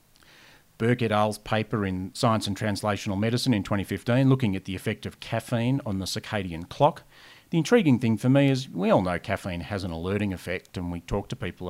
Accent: Australian